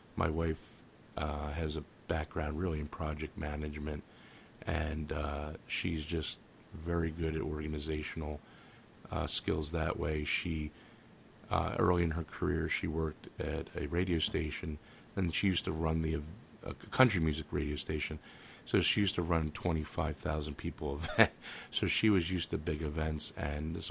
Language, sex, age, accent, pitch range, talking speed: English, male, 40-59, American, 75-85 Hz, 160 wpm